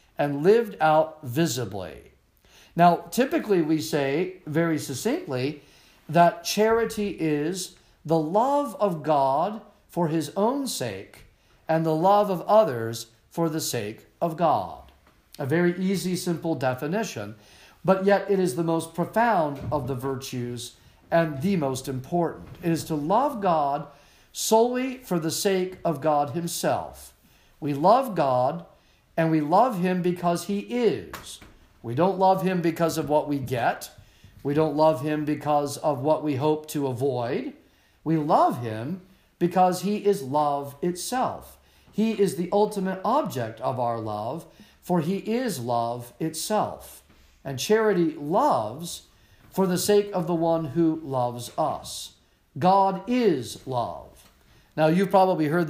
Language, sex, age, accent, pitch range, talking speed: English, male, 50-69, American, 145-190 Hz, 140 wpm